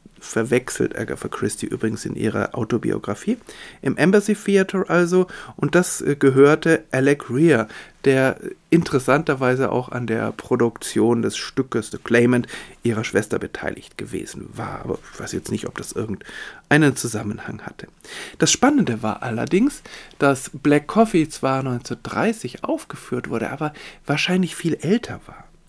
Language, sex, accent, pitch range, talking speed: German, male, German, 130-175 Hz, 130 wpm